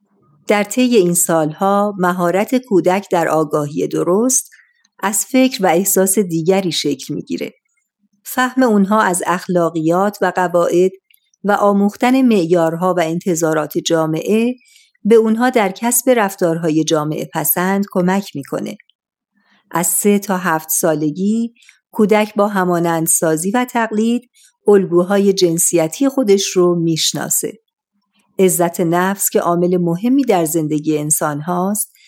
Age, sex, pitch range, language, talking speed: 50-69, female, 170-215 Hz, Persian, 115 wpm